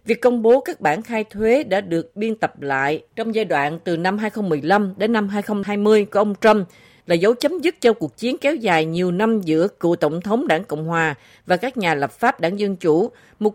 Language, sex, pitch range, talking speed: Vietnamese, female, 175-235 Hz, 225 wpm